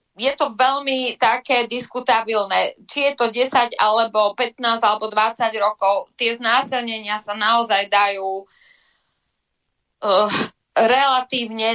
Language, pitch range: Slovak, 215-250 Hz